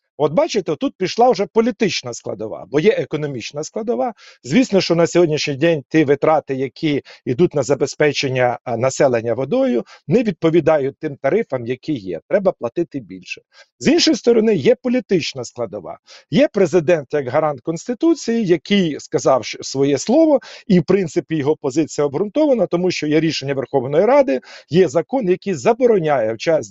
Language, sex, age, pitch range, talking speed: Ukrainian, male, 50-69, 140-180 Hz, 150 wpm